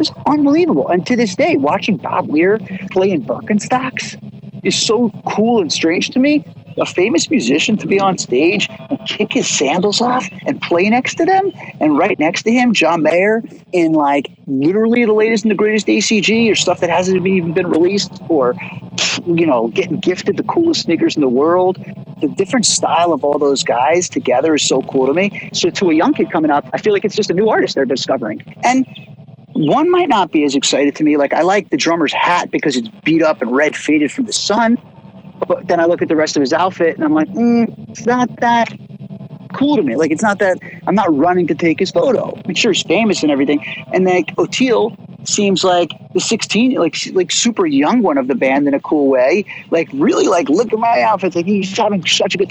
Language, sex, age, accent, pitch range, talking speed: English, male, 50-69, American, 165-230 Hz, 225 wpm